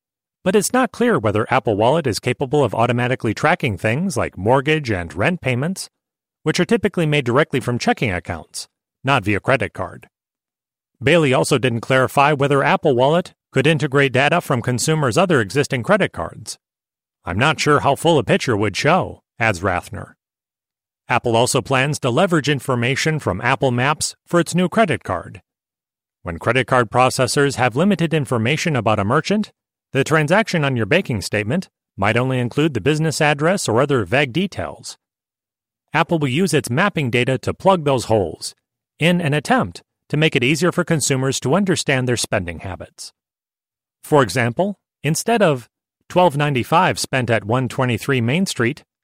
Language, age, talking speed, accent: English, 30-49, 160 wpm, American